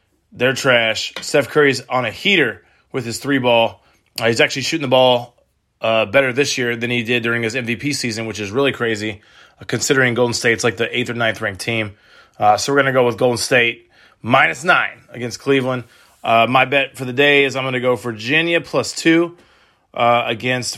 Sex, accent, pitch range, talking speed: male, American, 120-145 Hz, 210 wpm